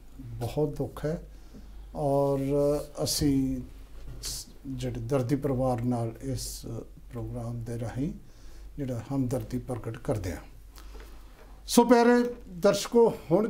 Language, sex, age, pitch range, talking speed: Punjabi, male, 50-69, 140-180 Hz, 100 wpm